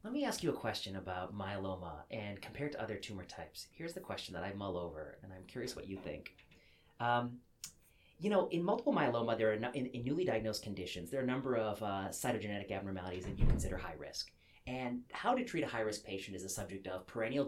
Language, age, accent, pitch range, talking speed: English, 30-49, American, 95-125 Hz, 230 wpm